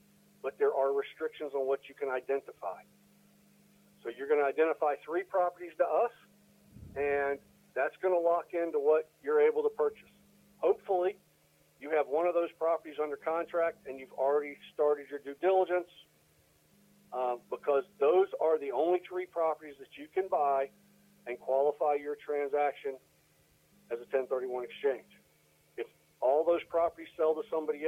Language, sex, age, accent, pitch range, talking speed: English, male, 50-69, American, 135-205 Hz, 155 wpm